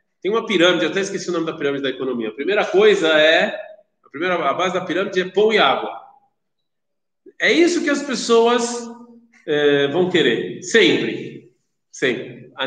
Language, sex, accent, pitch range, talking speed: Portuguese, male, Brazilian, 175-285 Hz, 175 wpm